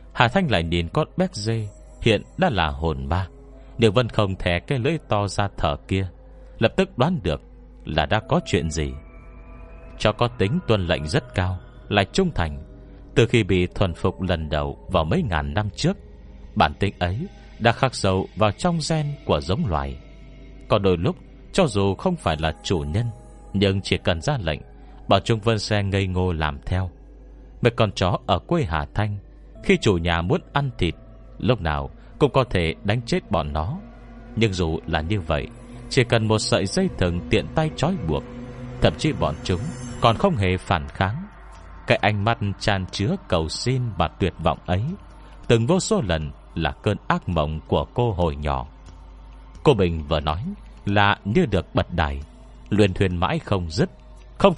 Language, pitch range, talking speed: Vietnamese, 85-120 Hz, 190 wpm